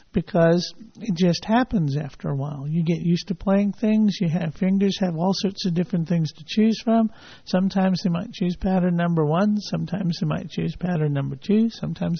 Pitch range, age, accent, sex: 160-195 Hz, 50-69, American, male